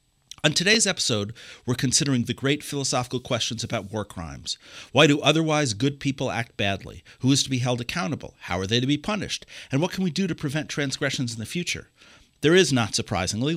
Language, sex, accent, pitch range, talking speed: English, male, American, 110-145 Hz, 205 wpm